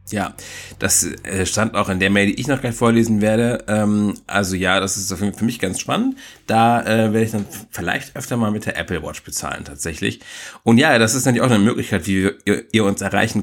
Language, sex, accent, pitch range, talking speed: German, male, German, 95-115 Hz, 210 wpm